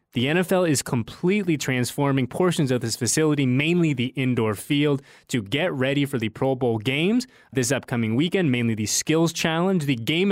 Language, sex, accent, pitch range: English, male, American, 115-155 Hz